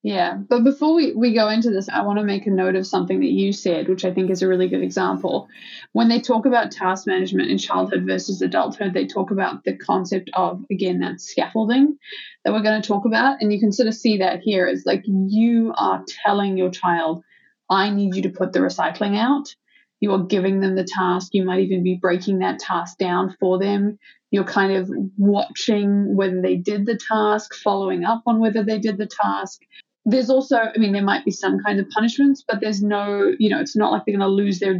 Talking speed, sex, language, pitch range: 230 wpm, female, English, 190-230 Hz